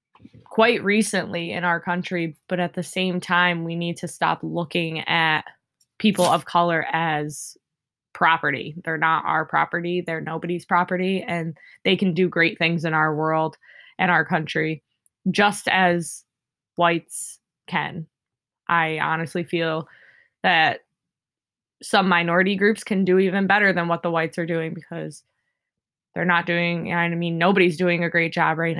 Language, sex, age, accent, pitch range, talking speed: English, female, 20-39, American, 165-185 Hz, 150 wpm